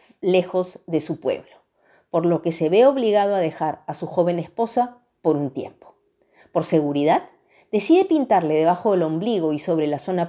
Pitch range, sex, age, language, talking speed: 155-195 Hz, female, 40-59, Spanish, 175 wpm